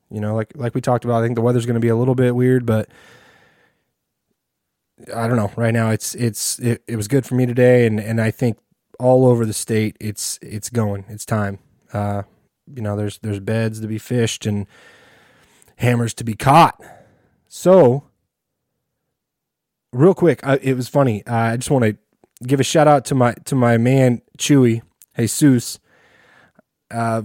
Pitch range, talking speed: 110-130 Hz, 185 wpm